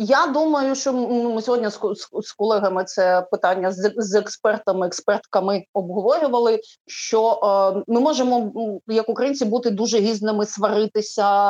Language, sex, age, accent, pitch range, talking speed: Ukrainian, female, 30-49, native, 200-240 Hz, 135 wpm